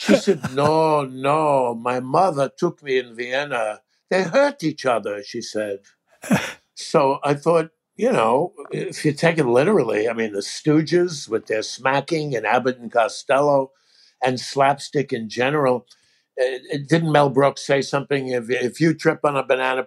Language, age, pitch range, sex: English, 60-79, 125-170 Hz, male